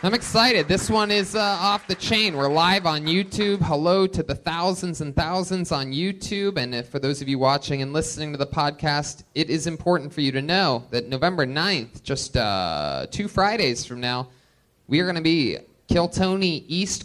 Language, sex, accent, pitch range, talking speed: English, male, American, 125-165 Hz, 195 wpm